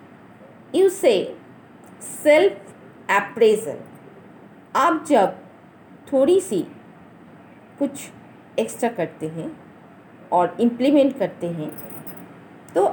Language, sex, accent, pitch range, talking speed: Hindi, female, native, 205-340 Hz, 80 wpm